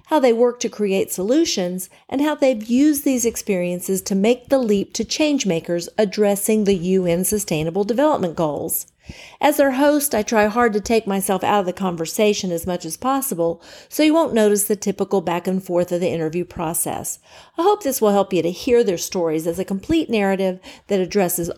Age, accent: 50-69, American